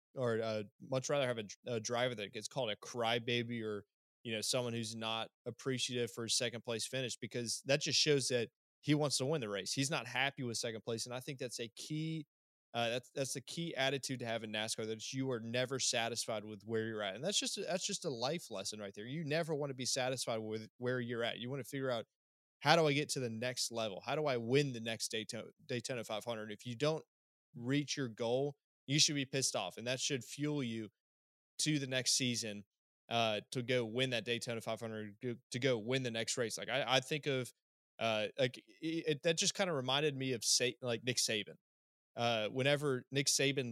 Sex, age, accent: male, 20-39, American